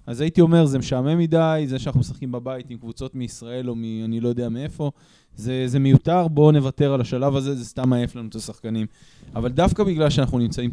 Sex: male